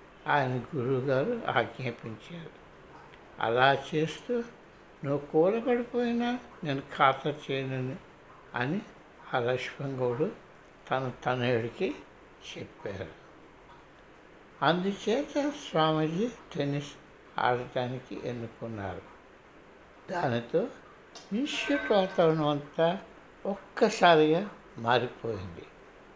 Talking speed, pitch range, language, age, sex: 65 wpm, 135-205 Hz, Telugu, 60-79, male